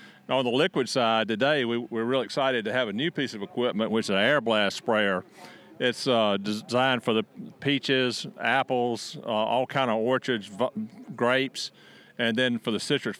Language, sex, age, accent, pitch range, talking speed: English, male, 40-59, American, 110-130 Hz, 175 wpm